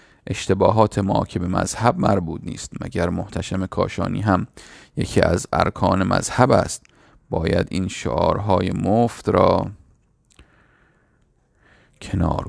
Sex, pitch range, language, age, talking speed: male, 90-105 Hz, Persian, 40-59, 95 wpm